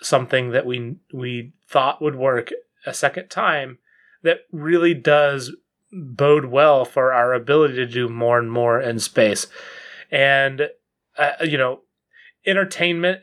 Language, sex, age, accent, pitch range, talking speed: English, male, 30-49, American, 120-160 Hz, 135 wpm